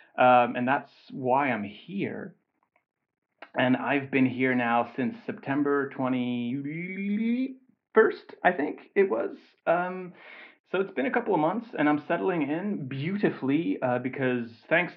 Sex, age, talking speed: male, 30-49, 135 wpm